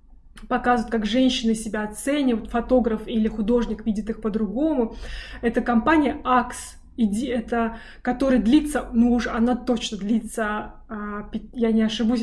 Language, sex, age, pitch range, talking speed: Russian, female, 20-39, 220-255 Hz, 125 wpm